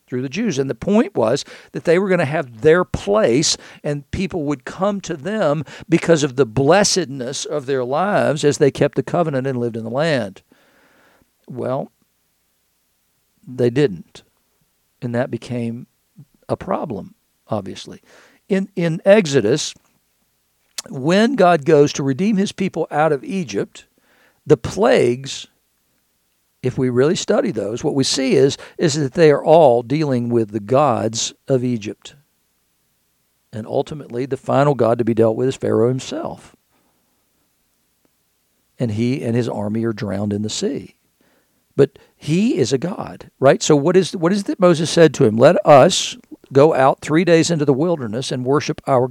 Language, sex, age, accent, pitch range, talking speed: English, male, 60-79, American, 125-170 Hz, 160 wpm